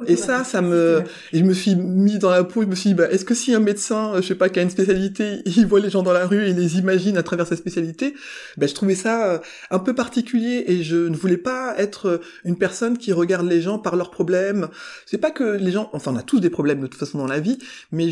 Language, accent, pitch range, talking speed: French, French, 160-200 Hz, 280 wpm